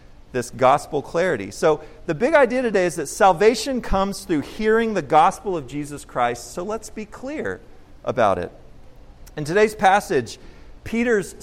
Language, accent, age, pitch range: English, American, 40-59, 155-220 Hz